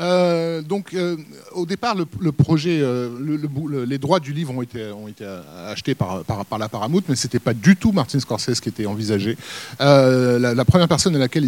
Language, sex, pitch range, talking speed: French, male, 125-160 Hz, 220 wpm